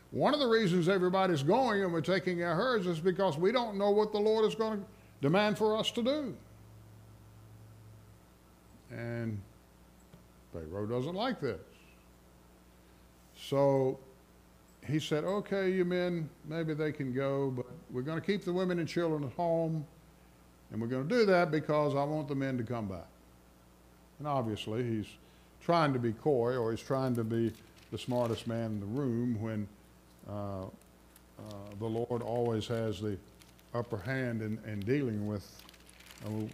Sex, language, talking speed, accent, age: male, English, 160 wpm, American, 60-79